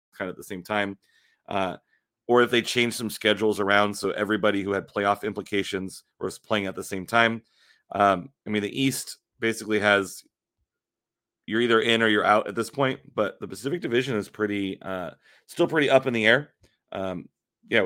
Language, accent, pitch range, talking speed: English, American, 100-115 Hz, 190 wpm